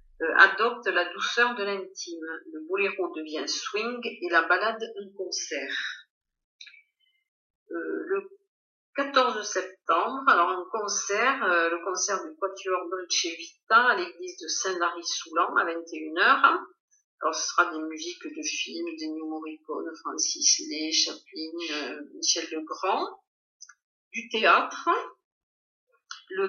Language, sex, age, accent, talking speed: French, female, 50-69, French, 125 wpm